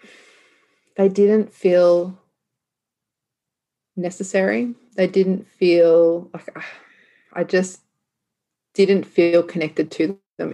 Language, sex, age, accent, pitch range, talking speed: English, female, 30-49, Australian, 165-195 Hz, 85 wpm